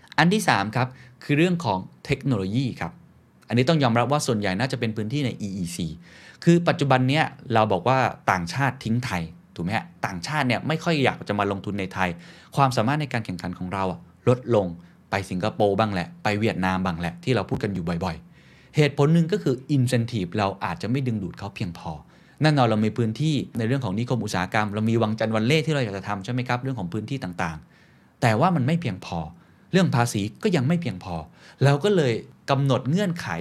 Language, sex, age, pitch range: Thai, male, 20-39, 100-145 Hz